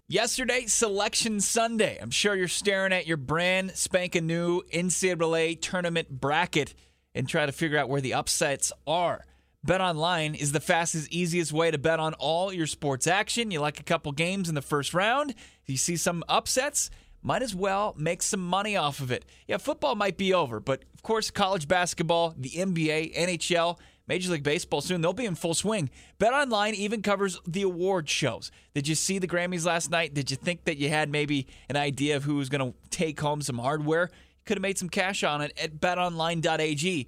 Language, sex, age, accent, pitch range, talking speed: English, male, 30-49, American, 150-195 Hz, 200 wpm